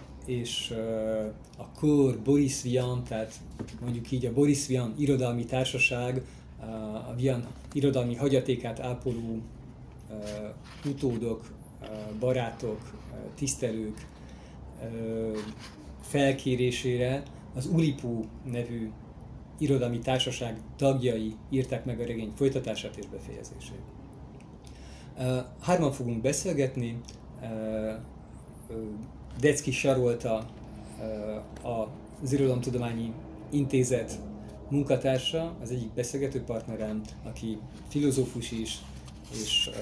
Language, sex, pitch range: Hungarian, male, 110-130 Hz